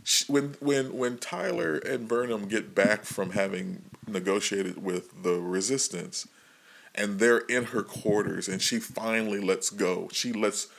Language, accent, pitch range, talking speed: English, American, 95-120 Hz, 145 wpm